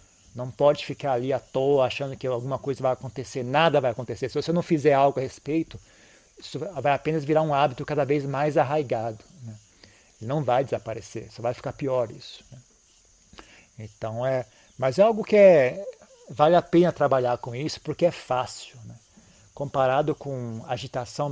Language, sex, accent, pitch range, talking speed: Portuguese, male, Brazilian, 115-155 Hz, 165 wpm